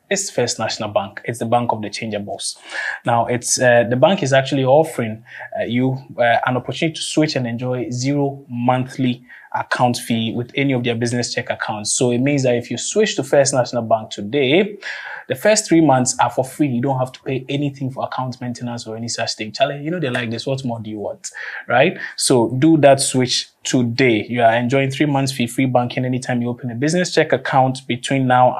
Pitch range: 120-140 Hz